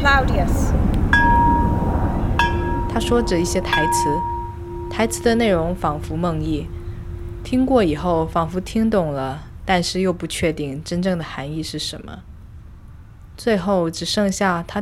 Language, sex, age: Chinese, female, 20-39